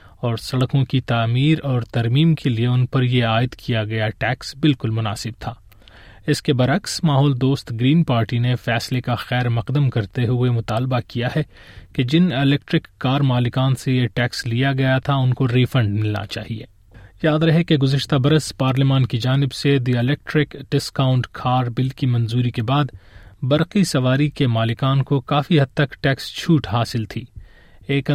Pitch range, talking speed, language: 115-140 Hz, 175 wpm, Urdu